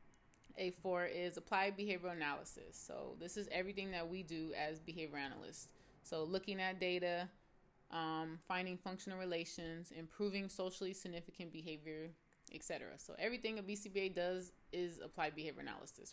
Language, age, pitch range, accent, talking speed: English, 20-39, 160-190 Hz, American, 140 wpm